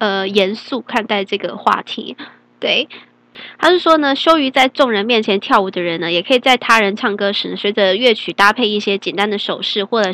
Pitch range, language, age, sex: 195-250 Hz, Chinese, 10-29, female